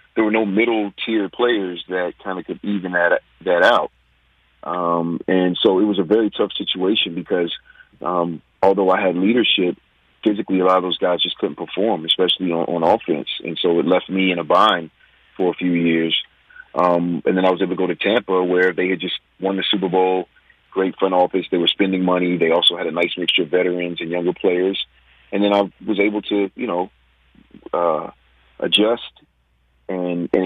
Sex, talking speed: male, 195 wpm